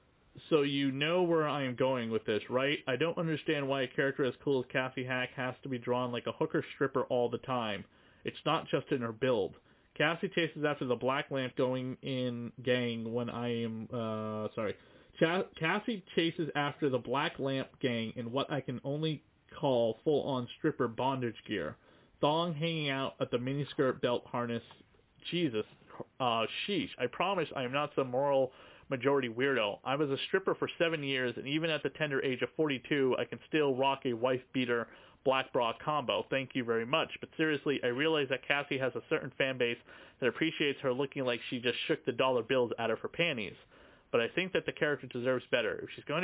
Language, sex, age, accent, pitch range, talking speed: English, male, 30-49, American, 125-145 Hz, 205 wpm